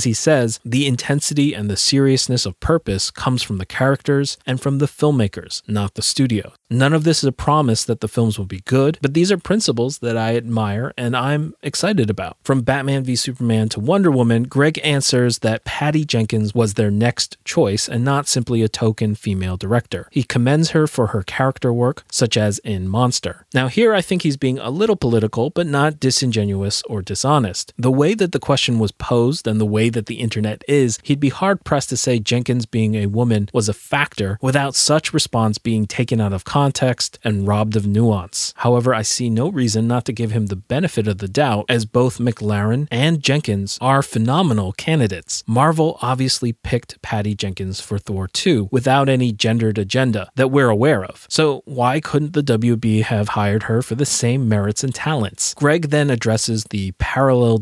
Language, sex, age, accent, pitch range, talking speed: English, male, 30-49, American, 110-140 Hz, 195 wpm